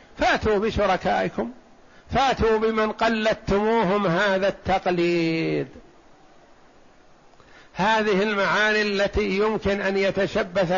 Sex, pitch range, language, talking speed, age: male, 195-220 Hz, Arabic, 70 wpm, 50-69